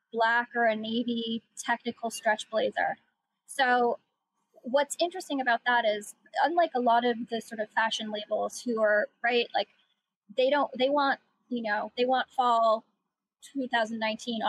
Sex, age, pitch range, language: female, 10-29, 215-265 Hz, English